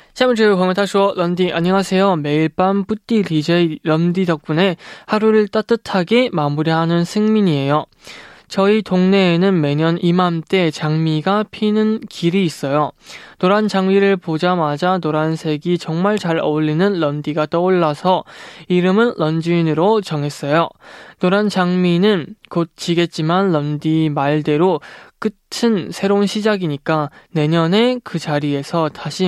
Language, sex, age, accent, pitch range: Korean, male, 20-39, native, 155-195 Hz